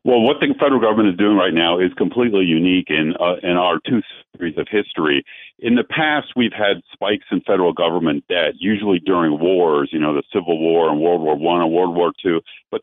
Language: English